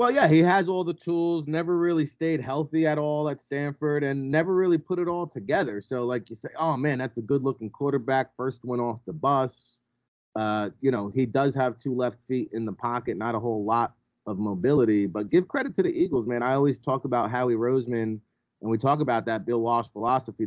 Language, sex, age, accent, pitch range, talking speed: English, male, 30-49, American, 115-140 Hz, 225 wpm